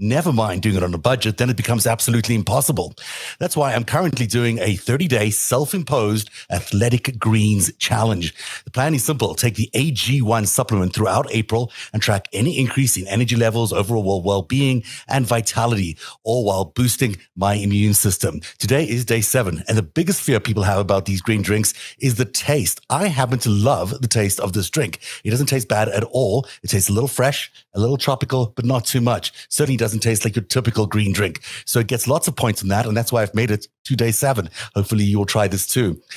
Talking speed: 210 wpm